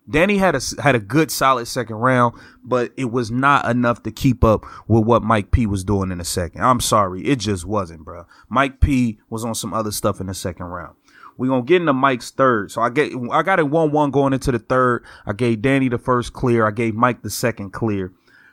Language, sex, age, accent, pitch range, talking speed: English, male, 20-39, American, 110-135 Hz, 245 wpm